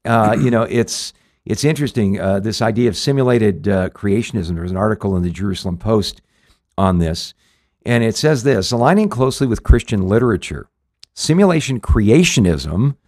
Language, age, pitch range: English, 50-69, 100-135 Hz